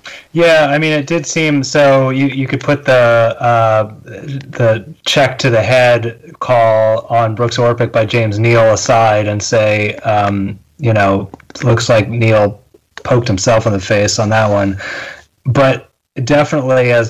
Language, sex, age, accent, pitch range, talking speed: English, male, 30-49, American, 110-125 Hz, 160 wpm